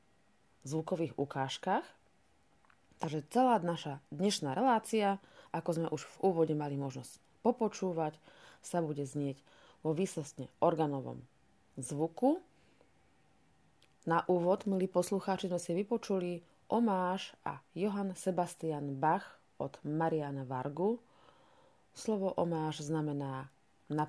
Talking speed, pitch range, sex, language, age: 100 wpm, 145-185 Hz, female, Slovak, 30-49